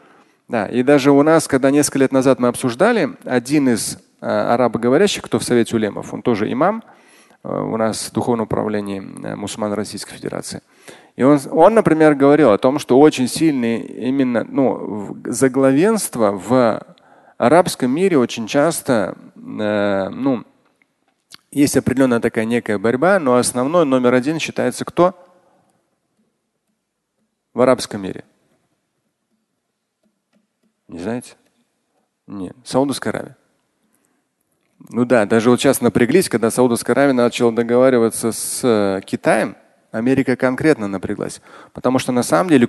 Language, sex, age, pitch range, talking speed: Russian, male, 30-49, 115-150 Hz, 125 wpm